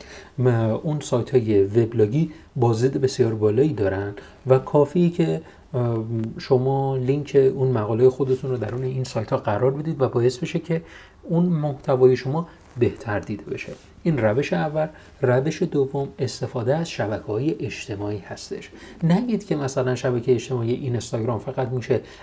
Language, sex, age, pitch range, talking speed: Persian, male, 30-49, 115-140 Hz, 145 wpm